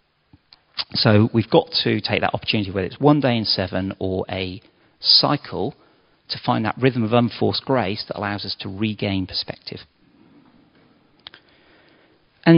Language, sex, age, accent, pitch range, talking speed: English, male, 40-59, British, 95-140 Hz, 145 wpm